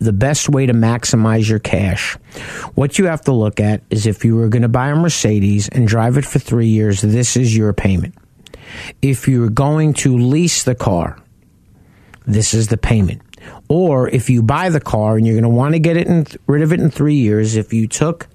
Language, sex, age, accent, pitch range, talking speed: English, male, 50-69, American, 110-150 Hz, 215 wpm